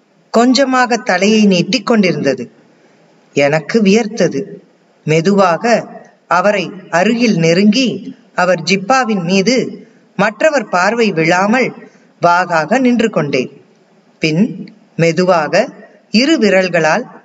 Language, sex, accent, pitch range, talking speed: Tamil, female, native, 185-230 Hz, 80 wpm